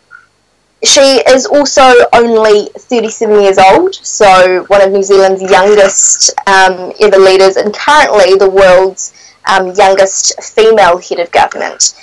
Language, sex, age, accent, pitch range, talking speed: English, female, 10-29, Australian, 190-225 Hz, 130 wpm